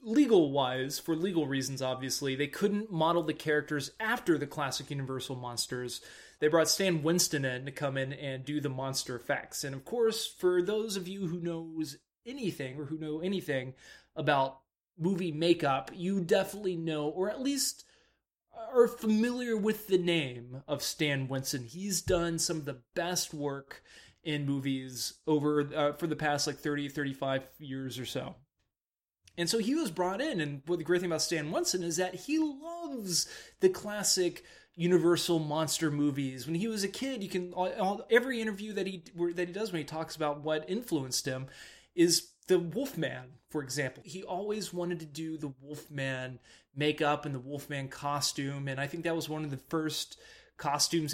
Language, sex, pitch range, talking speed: English, male, 135-180 Hz, 180 wpm